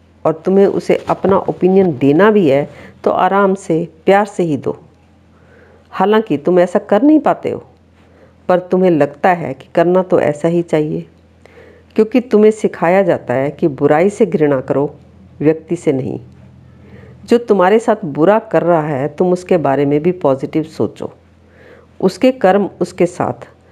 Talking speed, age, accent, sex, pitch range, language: 160 wpm, 50-69, native, female, 135-190 Hz, Hindi